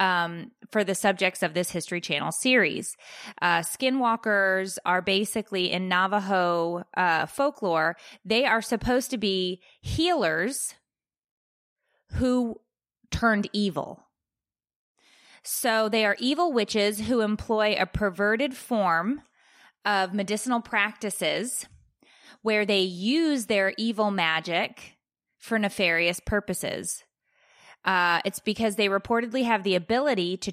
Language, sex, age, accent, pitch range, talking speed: English, female, 20-39, American, 185-225 Hz, 110 wpm